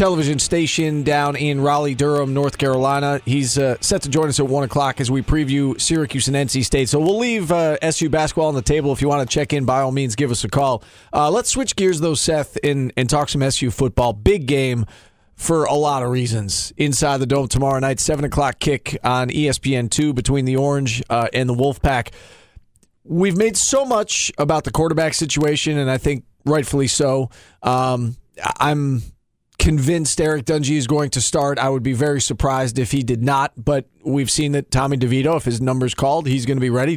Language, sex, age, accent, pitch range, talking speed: English, male, 40-59, American, 130-155 Hz, 210 wpm